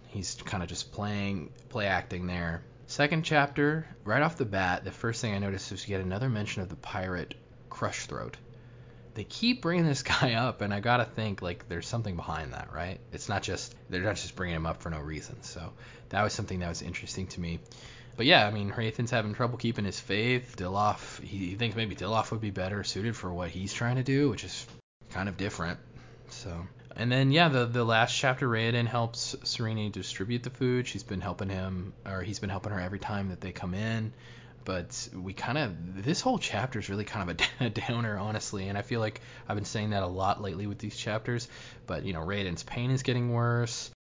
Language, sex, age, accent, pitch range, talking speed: English, male, 20-39, American, 95-120 Hz, 220 wpm